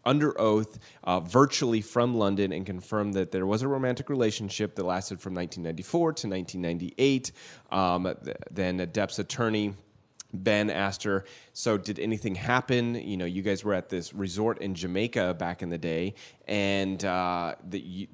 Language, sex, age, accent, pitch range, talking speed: English, male, 30-49, American, 95-115 Hz, 165 wpm